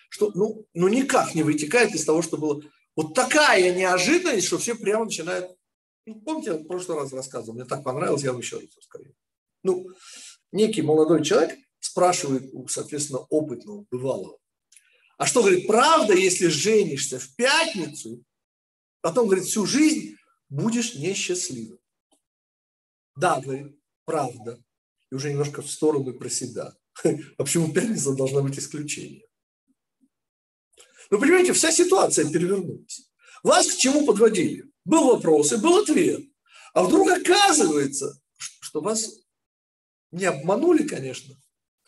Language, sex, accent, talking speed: Russian, male, native, 135 wpm